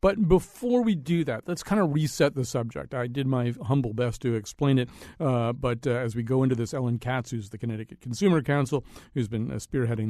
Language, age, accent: English, 50-69, American